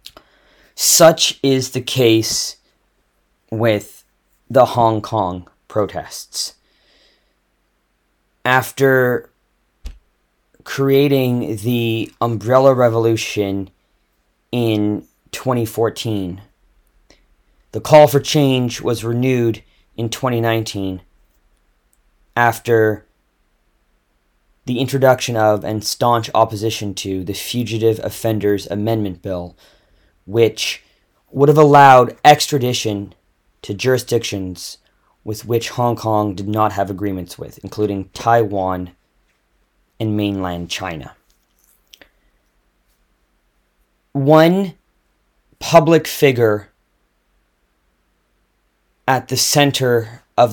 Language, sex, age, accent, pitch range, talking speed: English, male, 20-39, American, 90-120 Hz, 75 wpm